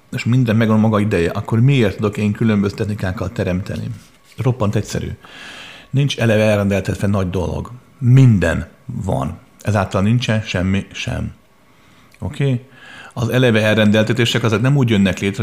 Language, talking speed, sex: Hungarian, 140 wpm, male